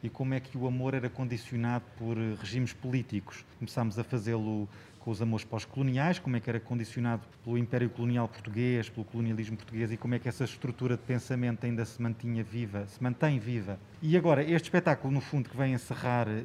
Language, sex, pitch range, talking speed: Portuguese, male, 120-135 Hz, 195 wpm